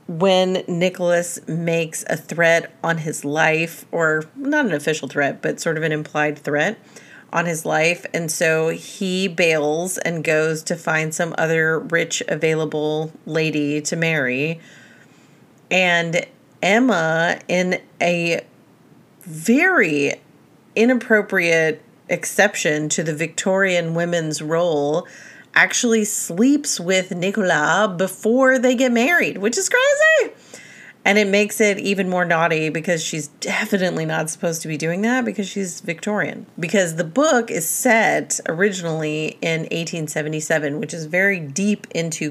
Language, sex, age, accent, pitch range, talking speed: English, female, 30-49, American, 160-195 Hz, 130 wpm